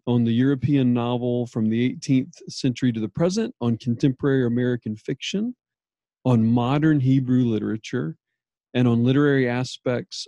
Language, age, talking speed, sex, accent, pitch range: English, 40-59, 135 wpm, male, American, 110-130 Hz